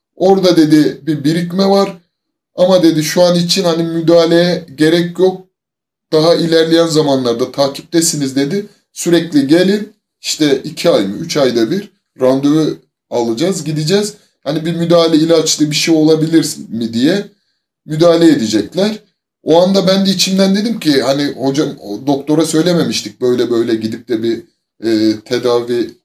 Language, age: Turkish, 30-49